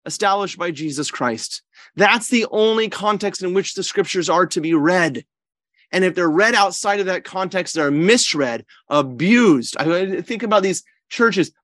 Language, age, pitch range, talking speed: English, 30-49, 165-250 Hz, 165 wpm